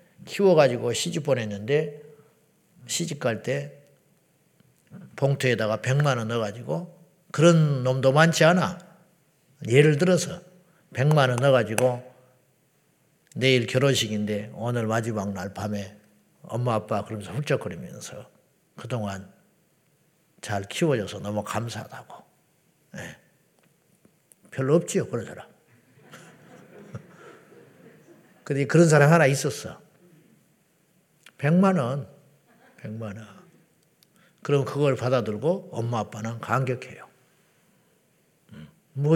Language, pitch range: Korean, 120-170 Hz